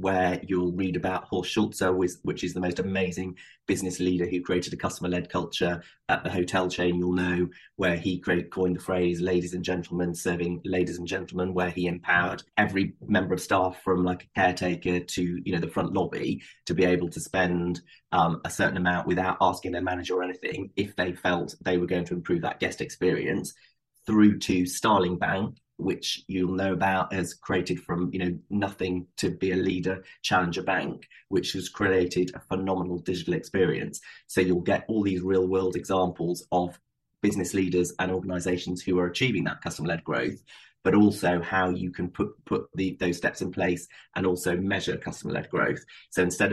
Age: 30-49